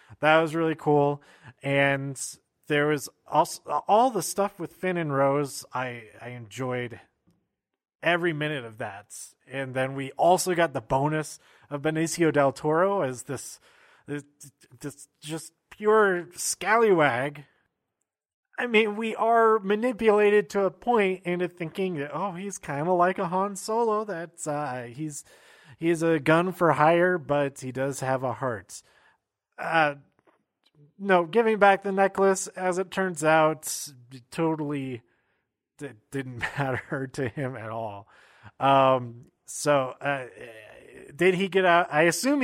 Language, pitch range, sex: English, 135-185 Hz, male